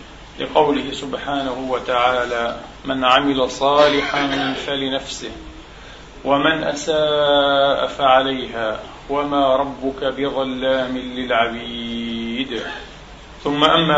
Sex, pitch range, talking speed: male, 135-160 Hz, 70 wpm